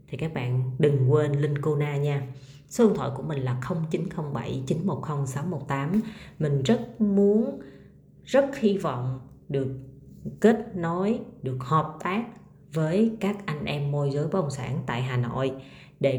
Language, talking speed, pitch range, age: Vietnamese, 150 wpm, 135-180 Hz, 20-39